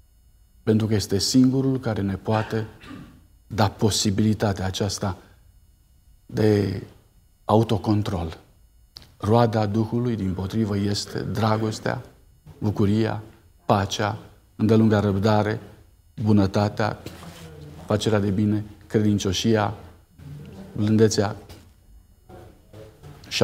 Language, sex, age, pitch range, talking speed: Romanian, male, 50-69, 100-140 Hz, 75 wpm